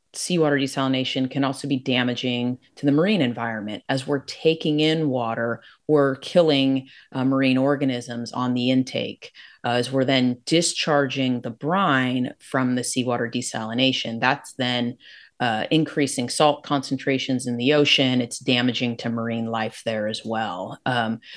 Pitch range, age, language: 125-145 Hz, 30-49, English